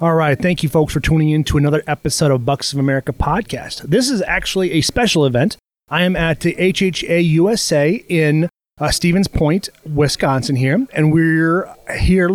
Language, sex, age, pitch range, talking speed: English, male, 30-49, 145-180 Hz, 180 wpm